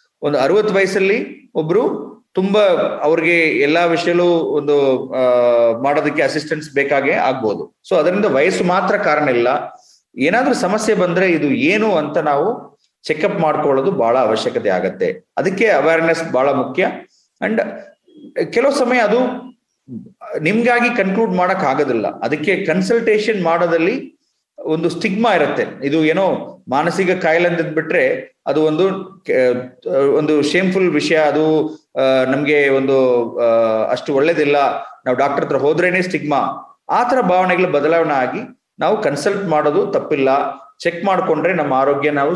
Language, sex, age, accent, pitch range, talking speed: English, male, 30-49, Indian, 145-205 Hz, 115 wpm